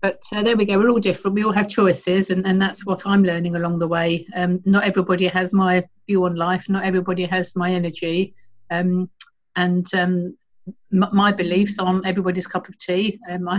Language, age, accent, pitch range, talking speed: English, 50-69, British, 175-195 Hz, 210 wpm